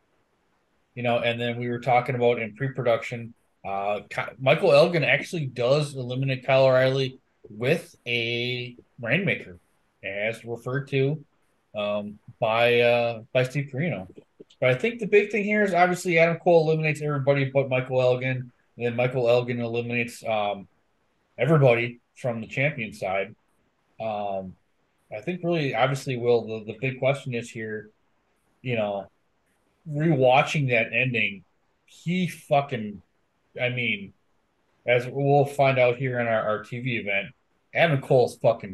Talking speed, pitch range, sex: 140 wpm, 115-145 Hz, male